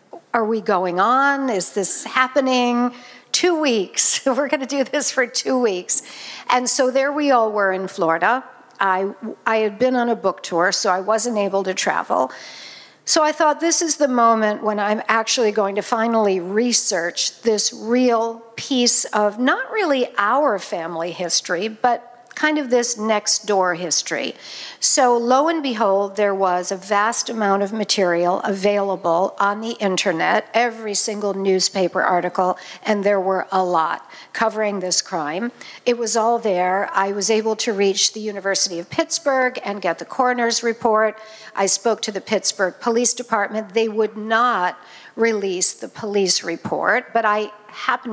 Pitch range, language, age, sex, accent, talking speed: 195-245 Hz, English, 60-79, female, American, 165 wpm